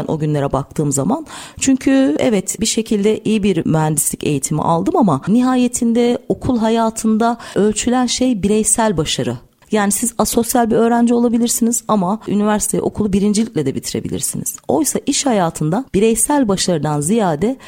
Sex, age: female, 40-59